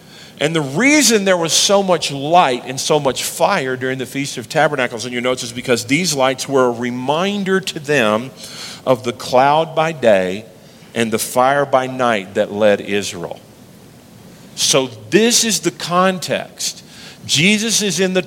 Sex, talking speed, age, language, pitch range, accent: male, 170 wpm, 50-69, English, 130-170 Hz, American